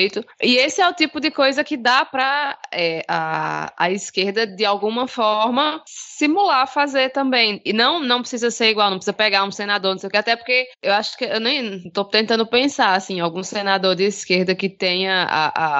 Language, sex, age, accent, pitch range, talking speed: Portuguese, female, 20-39, Brazilian, 180-250 Hz, 205 wpm